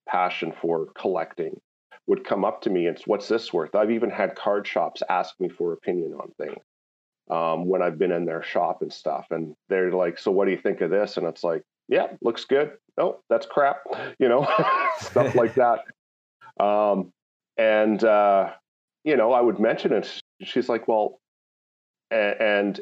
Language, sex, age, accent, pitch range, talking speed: English, male, 40-59, American, 90-110 Hz, 180 wpm